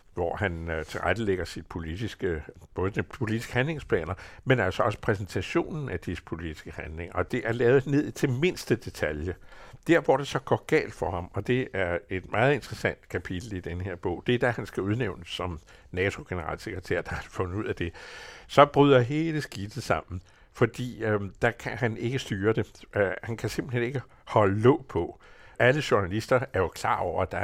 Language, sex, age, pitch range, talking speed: Danish, male, 60-79, 90-120 Hz, 190 wpm